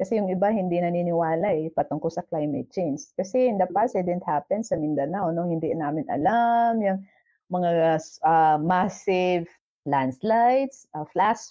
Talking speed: 155 wpm